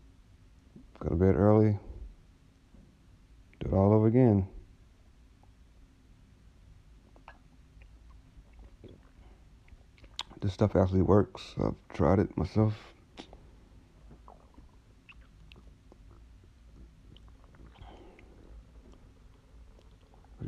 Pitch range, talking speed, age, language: 85-95 Hz, 50 wpm, 60-79, English